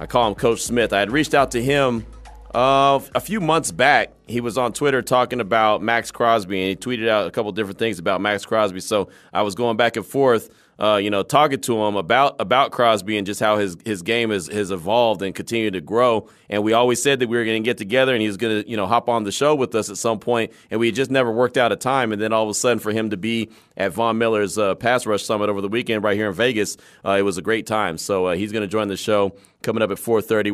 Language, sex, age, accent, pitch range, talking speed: English, male, 30-49, American, 105-125 Hz, 280 wpm